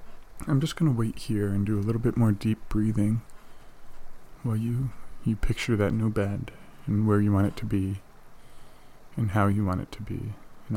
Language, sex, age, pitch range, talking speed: English, male, 20-39, 100-115 Hz, 200 wpm